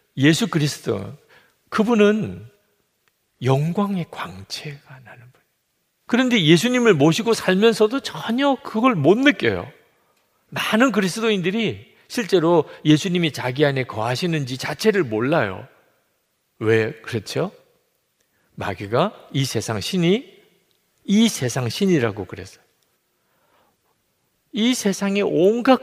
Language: Korean